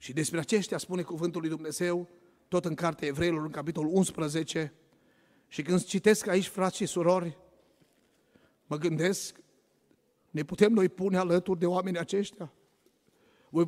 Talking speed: 140 wpm